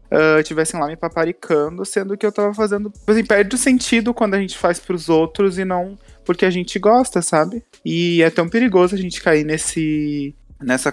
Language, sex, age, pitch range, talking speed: Portuguese, male, 20-39, 120-170 Hz, 200 wpm